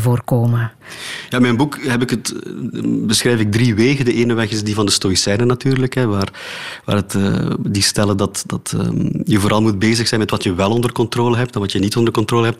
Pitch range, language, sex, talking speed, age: 100-120 Hz, Dutch, male, 240 wpm, 30-49